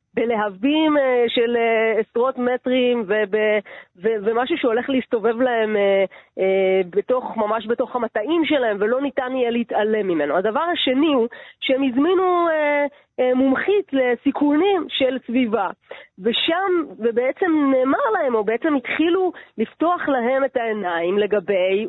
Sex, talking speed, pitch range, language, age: female, 105 wpm, 225-290 Hz, Hebrew, 30-49